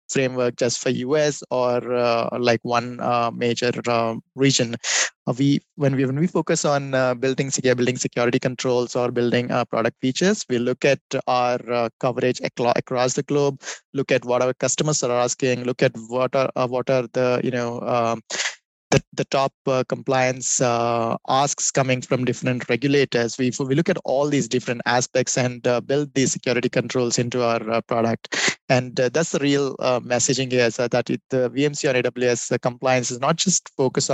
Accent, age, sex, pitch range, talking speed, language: Indian, 20-39, male, 120-135 Hz, 190 wpm, English